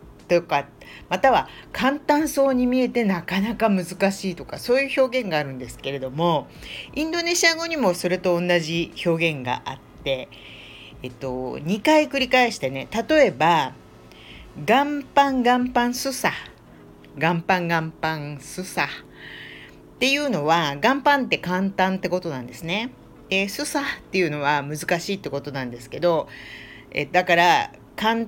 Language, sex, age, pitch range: Japanese, female, 50-69, 140-225 Hz